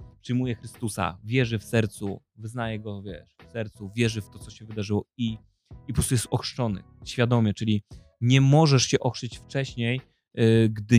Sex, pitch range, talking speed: male, 110-135 Hz, 170 wpm